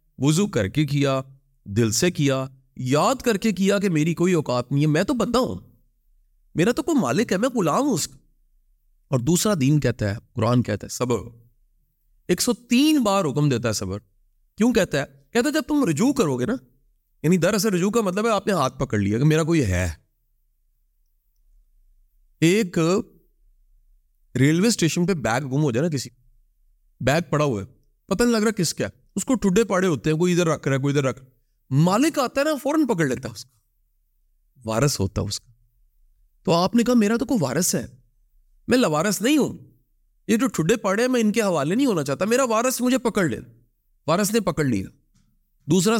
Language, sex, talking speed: Urdu, male, 200 wpm